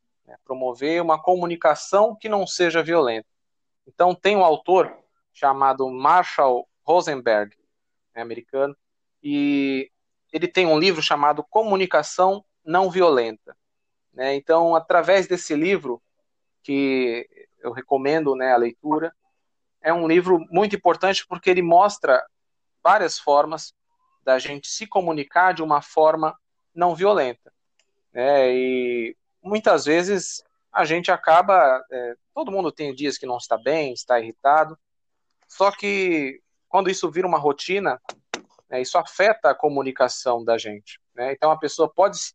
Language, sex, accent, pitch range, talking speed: Portuguese, male, Brazilian, 135-180 Hz, 130 wpm